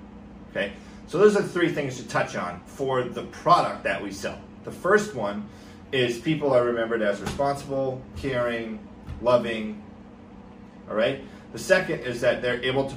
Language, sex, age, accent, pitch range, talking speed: English, male, 30-49, American, 110-140 Hz, 165 wpm